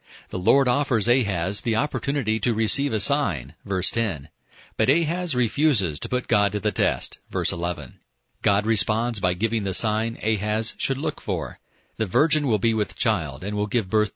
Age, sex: 40-59, male